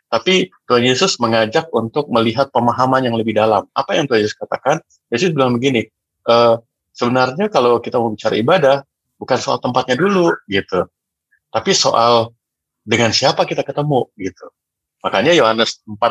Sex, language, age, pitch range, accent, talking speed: male, Indonesian, 30-49, 110-145 Hz, native, 150 wpm